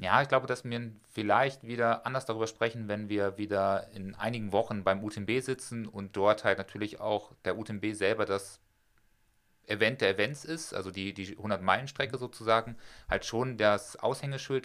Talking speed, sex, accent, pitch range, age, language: 170 wpm, male, German, 105-125 Hz, 30-49, German